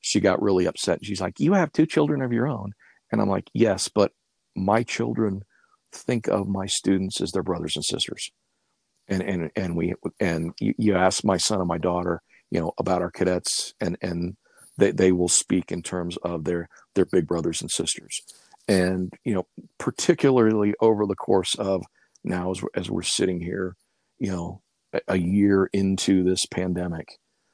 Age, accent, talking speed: 50-69, American, 185 wpm